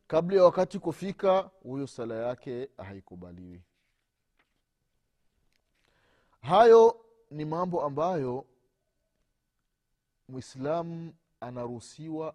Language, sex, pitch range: Swahili, male, 110-150 Hz